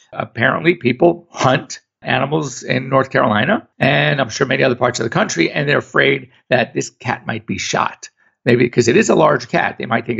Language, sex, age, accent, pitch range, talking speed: English, male, 50-69, American, 125-175 Hz, 205 wpm